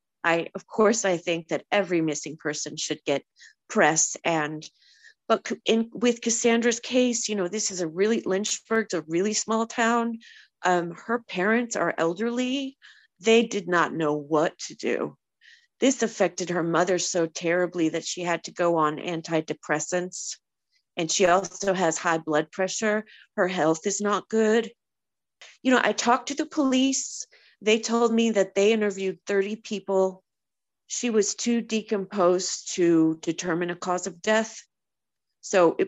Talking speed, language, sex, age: 155 wpm, English, female, 40-59